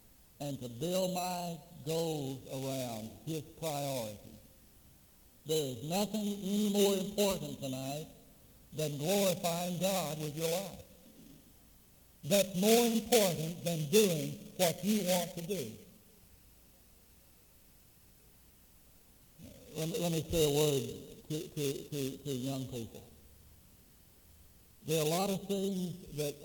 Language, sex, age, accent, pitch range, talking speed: English, male, 60-79, American, 125-180 Hz, 115 wpm